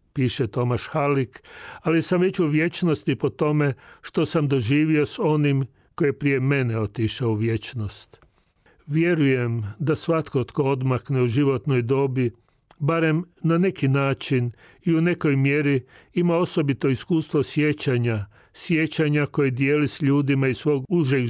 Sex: male